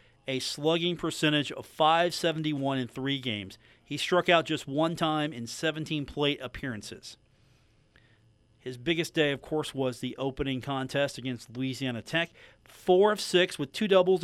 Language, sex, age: English, male, 40-59